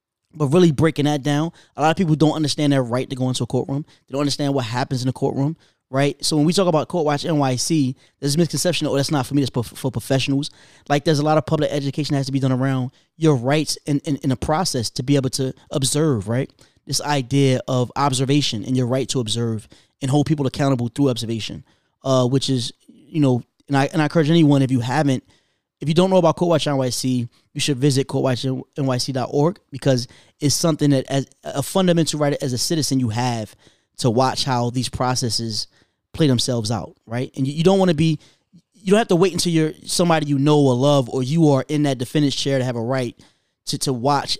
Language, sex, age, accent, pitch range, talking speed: English, male, 20-39, American, 130-150 Hz, 230 wpm